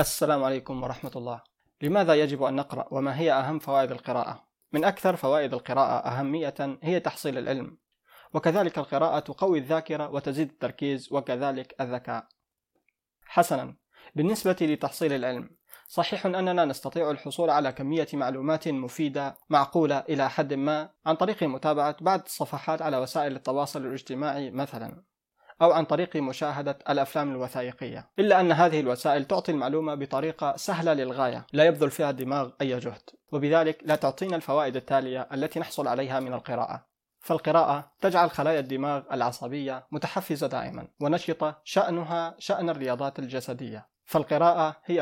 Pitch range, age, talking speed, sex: 135-160 Hz, 20-39, 135 wpm, male